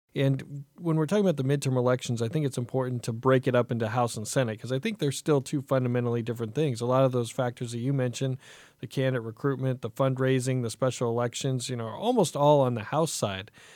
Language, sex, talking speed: English, male, 235 wpm